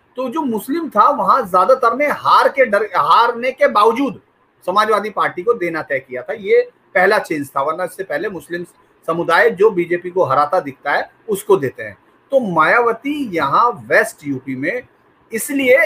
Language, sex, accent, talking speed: English, male, Indian, 170 wpm